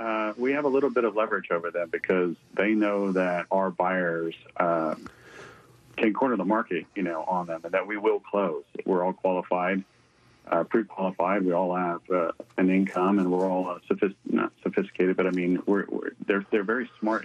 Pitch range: 90-105 Hz